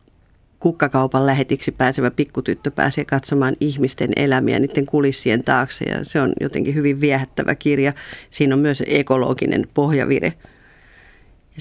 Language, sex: Finnish, female